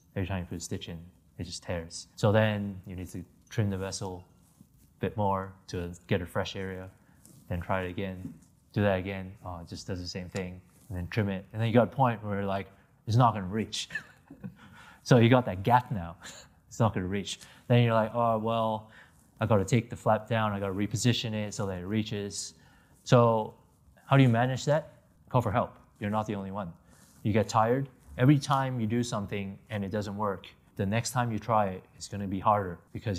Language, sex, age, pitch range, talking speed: English, male, 20-39, 95-110 Hz, 225 wpm